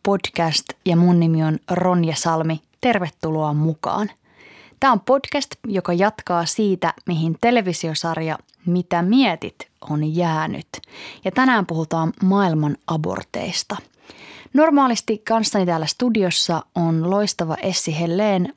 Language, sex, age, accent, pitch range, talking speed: Finnish, female, 20-39, native, 160-205 Hz, 110 wpm